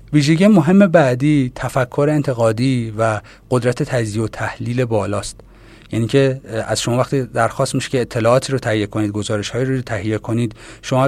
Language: Persian